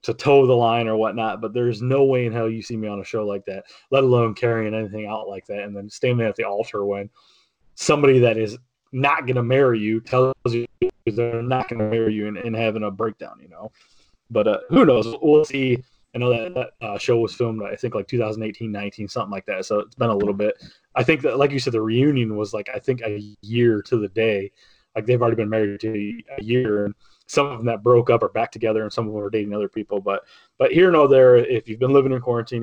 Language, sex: English, male